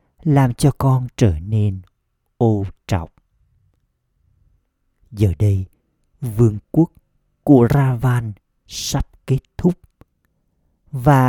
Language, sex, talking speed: Vietnamese, male, 90 wpm